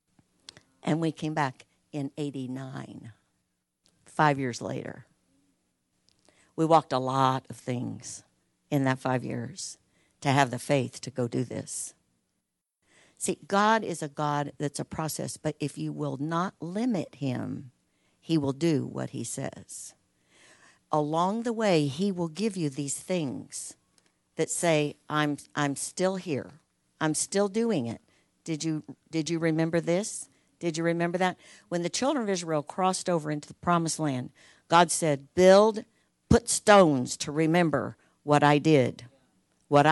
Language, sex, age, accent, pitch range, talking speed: English, female, 60-79, American, 140-175 Hz, 150 wpm